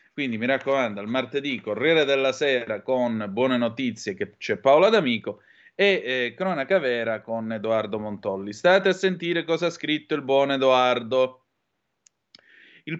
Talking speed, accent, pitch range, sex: 150 wpm, native, 125-175 Hz, male